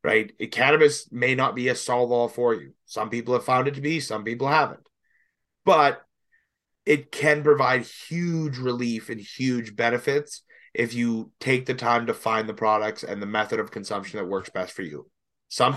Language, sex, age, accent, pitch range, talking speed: English, male, 30-49, American, 120-150 Hz, 185 wpm